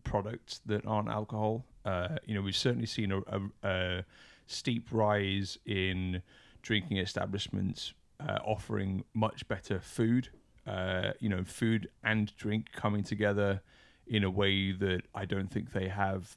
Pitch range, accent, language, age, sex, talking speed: 95-110 Hz, British, English, 30-49, male, 145 wpm